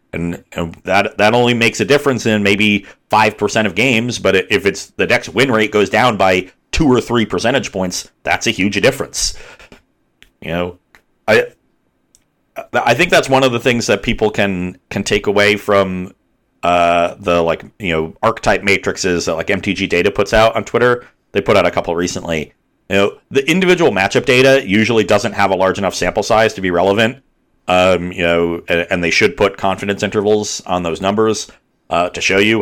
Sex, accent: male, American